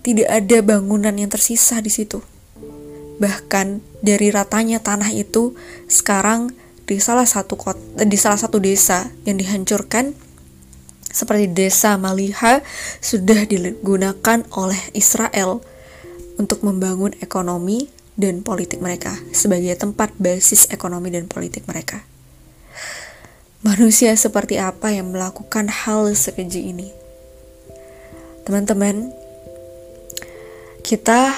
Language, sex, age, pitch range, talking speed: Indonesian, female, 20-39, 185-220 Hz, 100 wpm